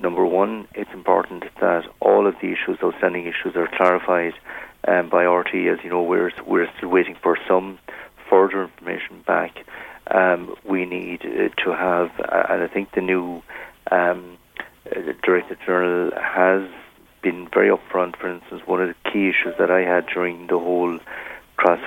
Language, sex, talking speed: English, male, 175 wpm